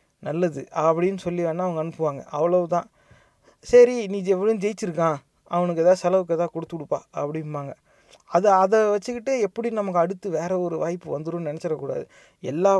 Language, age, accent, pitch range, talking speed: Tamil, 30-49, native, 155-195 Hz, 135 wpm